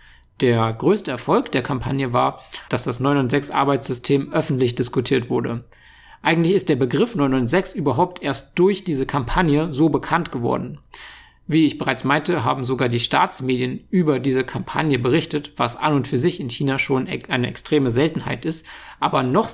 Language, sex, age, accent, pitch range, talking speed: German, male, 50-69, German, 130-155 Hz, 160 wpm